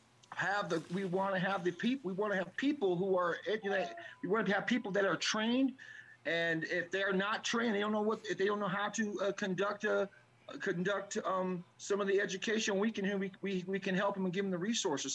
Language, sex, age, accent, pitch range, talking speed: Russian, male, 40-59, American, 170-205 Hz, 250 wpm